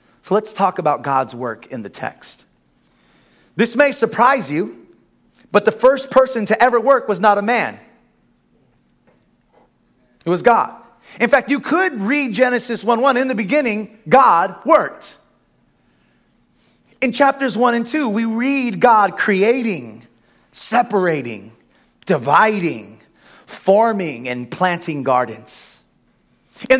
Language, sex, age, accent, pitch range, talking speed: English, male, 30-49, American, 200-255 Hz, 125 wpm